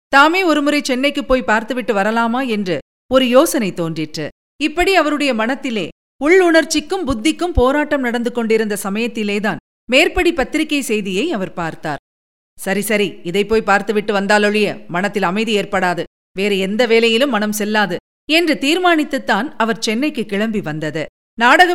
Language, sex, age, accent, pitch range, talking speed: Tamil, female, 40-59, native, 205-295 Hz, 125 wpm